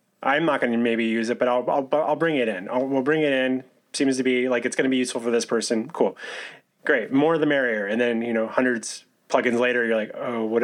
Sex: male